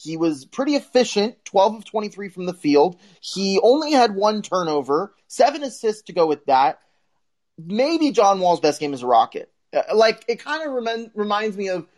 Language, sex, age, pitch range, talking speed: English, male, 20-39, 150-220 Hz, 185 wpm